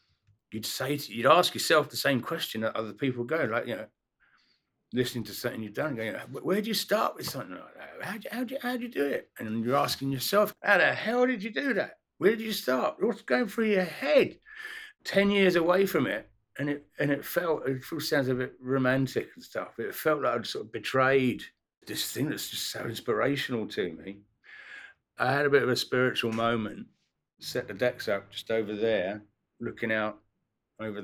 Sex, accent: male, British